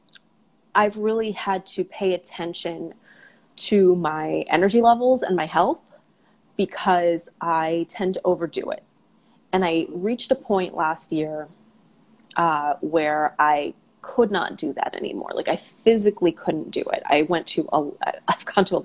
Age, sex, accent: 30-49, female, American